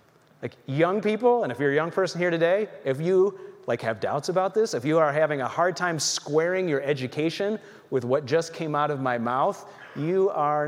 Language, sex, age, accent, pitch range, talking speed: English, male, 30-49, American, 140-185 Hz, 215 wpm